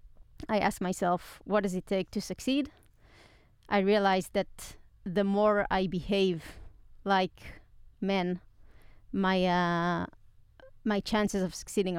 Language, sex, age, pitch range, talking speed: Hebrew, female, 30-49, 175-205 Hz, 120 wpm